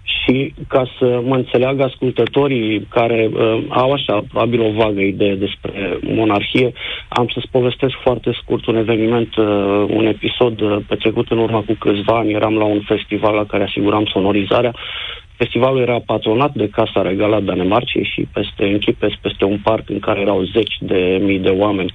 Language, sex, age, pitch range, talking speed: Romanian, male, 40-59, 105-120 Hz, 170 wpm